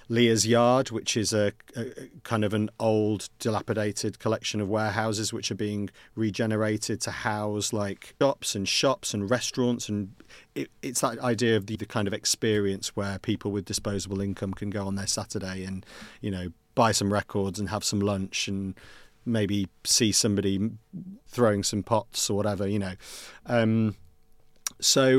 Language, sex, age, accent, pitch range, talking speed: English, male, 30-49, British, 105-120 Hz, 170 wpm